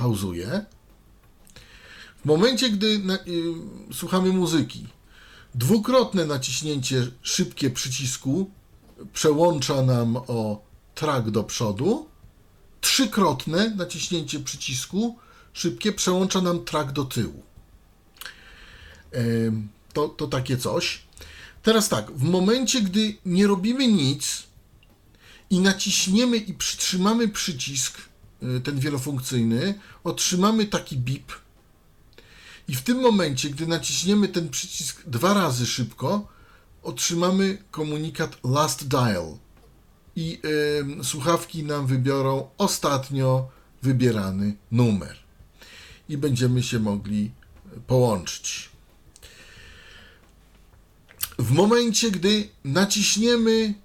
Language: Polish